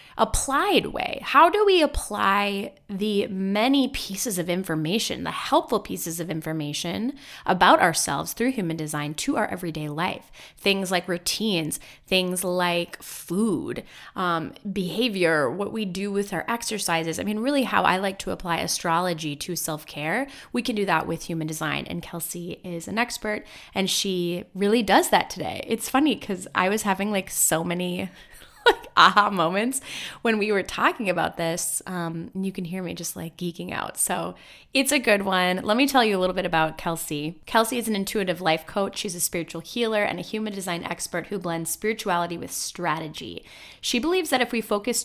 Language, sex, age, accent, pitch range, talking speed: English, female, 20-39, American, 170-230 Hz, 180 wpm